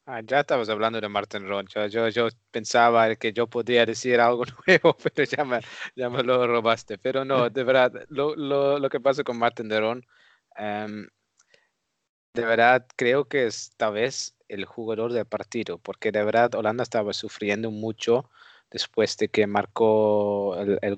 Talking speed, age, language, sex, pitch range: 175 wpm, 20-39, Spanish, male, 105-125 Hz